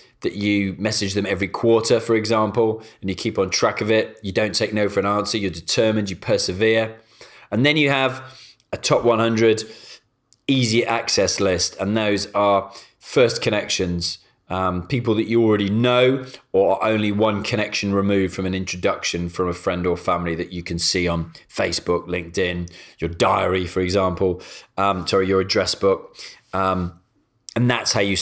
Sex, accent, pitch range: male, British, 95-110 Hz